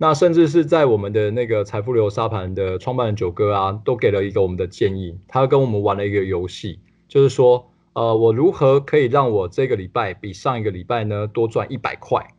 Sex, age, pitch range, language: male, 20-39, 105-130 Hz, Chinese